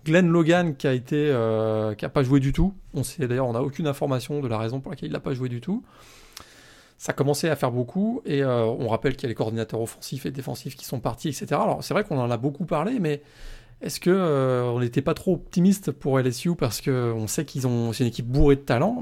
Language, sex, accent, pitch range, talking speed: French, male, French, 125-155 Hz, 245 wpm